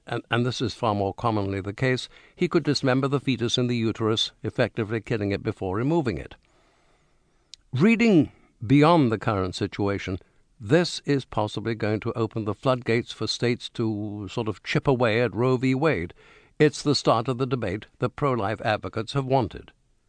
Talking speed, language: 175 wpm, English